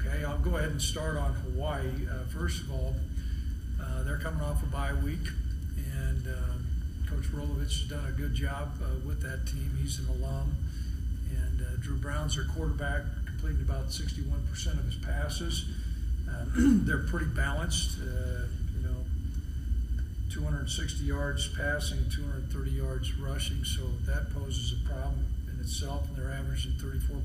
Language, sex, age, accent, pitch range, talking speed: English, male, 50-69, American, 70-80 Hz, 155 wpm